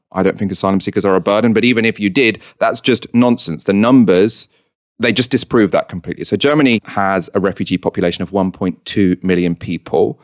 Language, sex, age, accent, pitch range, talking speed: English, male, 30-49, British, 90-110 Hz, 195 wpm